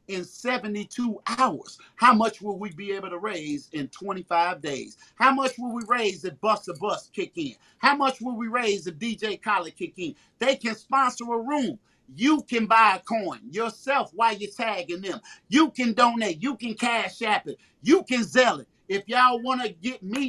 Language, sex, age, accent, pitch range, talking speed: English, male, 40-59, American, 185-250 Hz, 200 wpm